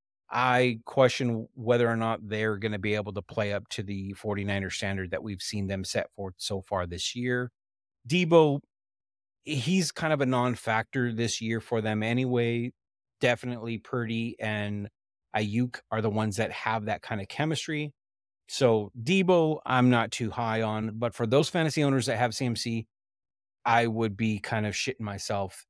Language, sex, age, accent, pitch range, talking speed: English, male, 30-49, American, 110-135 Hz, 170 wpm